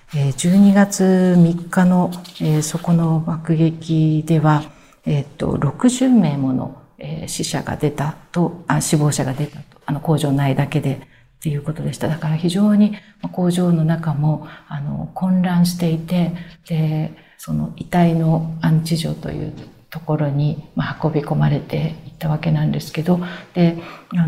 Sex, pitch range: female, 150-175 Hz